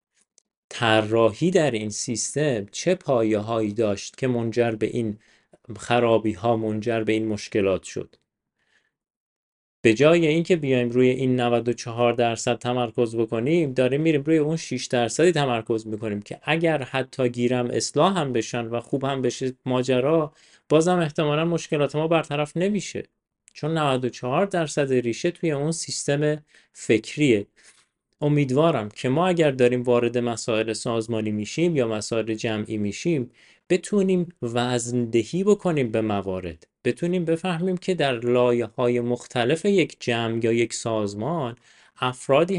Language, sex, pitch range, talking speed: Persian, male, 115-160 Hz, 130 wpm